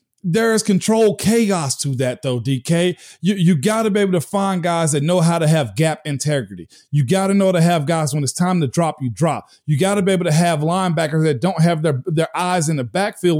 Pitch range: 155-185 Hz